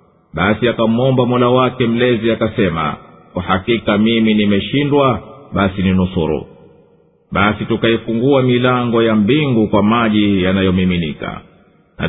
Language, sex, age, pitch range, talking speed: Swahili, male, 50-69, 100-125 Hz, 105 wpm